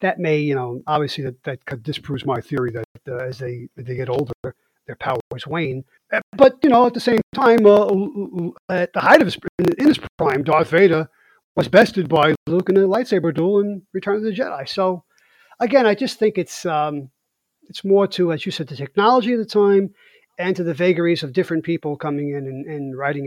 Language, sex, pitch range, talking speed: English, male, 135-200 Hz, 210 wpm